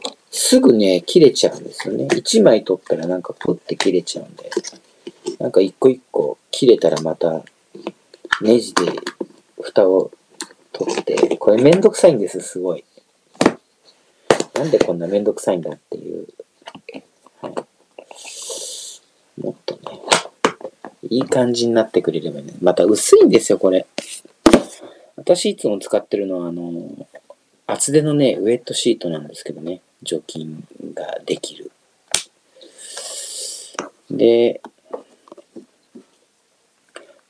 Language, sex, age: Japanese, male, 40-59